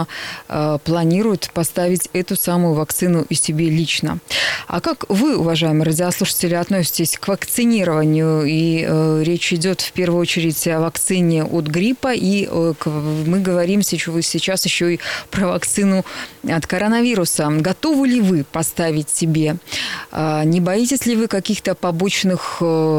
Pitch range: 160-195 Hz